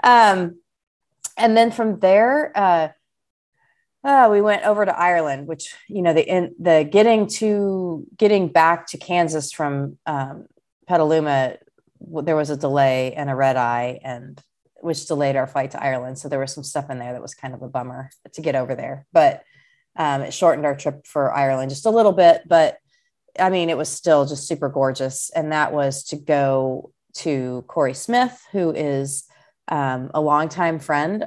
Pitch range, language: 140-180 Hz, English